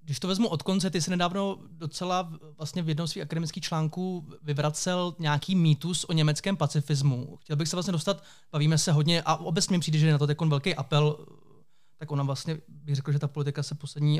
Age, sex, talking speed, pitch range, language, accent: 20-39, male, 210 wpm, 145-170 Hz, Czech, native